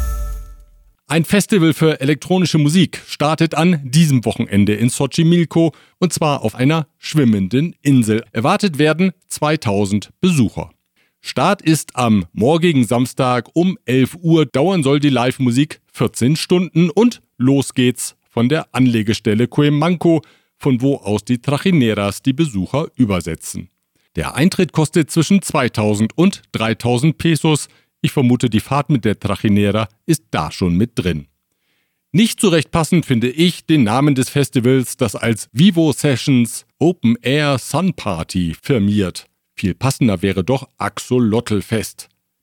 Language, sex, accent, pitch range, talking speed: German, male, German, 115-160 Hz, 135 wpm